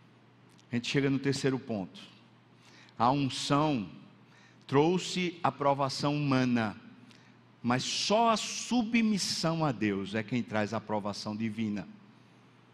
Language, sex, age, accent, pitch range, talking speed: Portuguese, male, 60-79, Brazilian, 120-155 Hz, 110 wpm